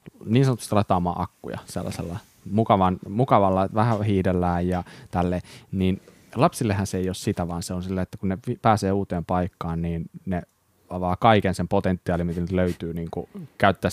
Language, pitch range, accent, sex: Finnish, 90-100 Hz, native, male